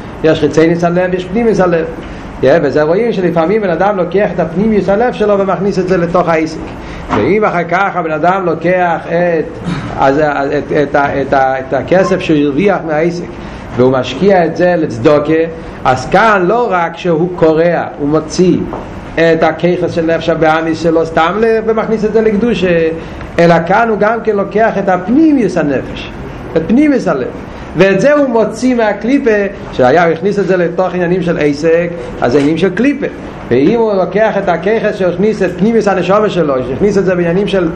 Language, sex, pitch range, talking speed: Hebrew, male, 165-205 Hz, 160 wpm